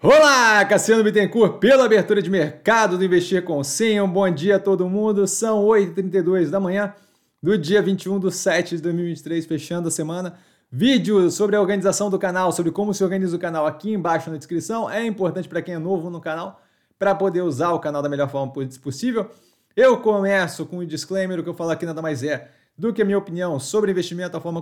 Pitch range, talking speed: 160-205 Hz, 205 wpm